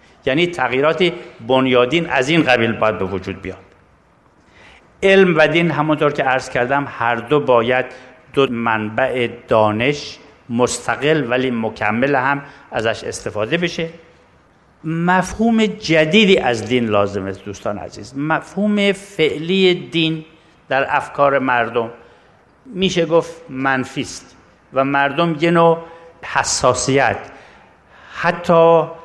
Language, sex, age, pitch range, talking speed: Persian, male, 60-79, 120-165 Hz, 110 wpm